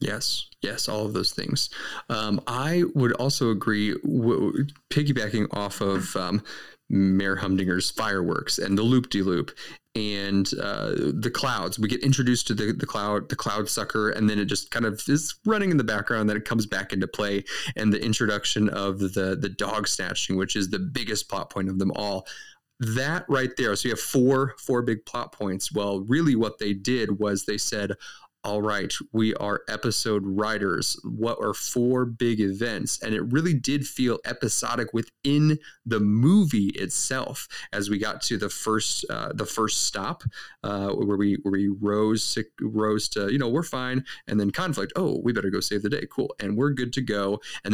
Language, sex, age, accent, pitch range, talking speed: English, male, 30-49, American, 100-130 Hz, 195 wpm